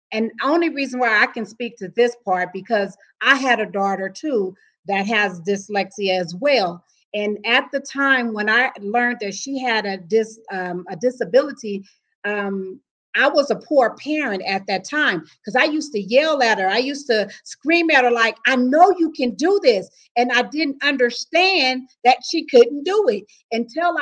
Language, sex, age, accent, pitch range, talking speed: English, female, 40-59, American, 235-305 Hz, 180 wpm